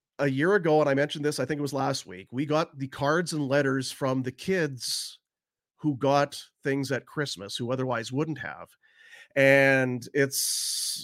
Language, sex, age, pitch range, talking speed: English, male, 40-59, 135-175 Hz, 180 wpm